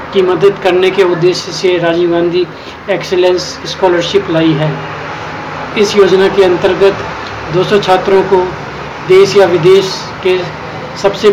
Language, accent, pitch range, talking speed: Hindi, native, 175-195 Hz, 125 wpm